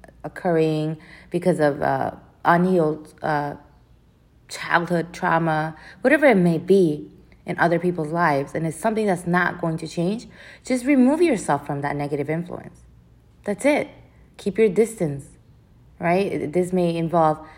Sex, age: female, 30-49